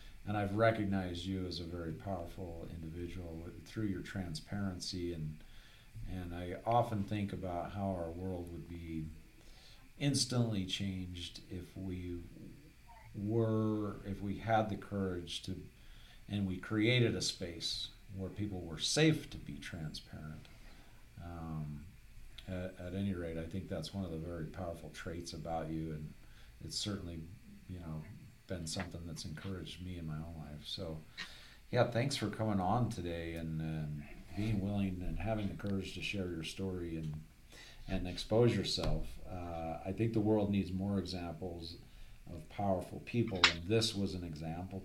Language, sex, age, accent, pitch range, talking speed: English, male, 50-69, American, 85-105 Hz, 155 wpm